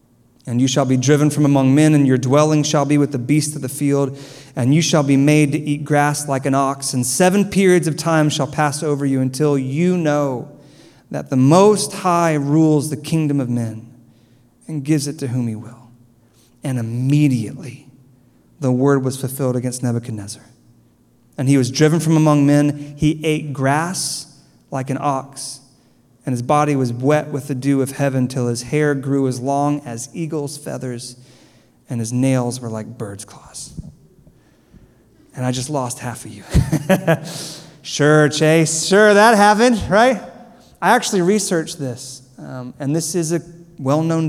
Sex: male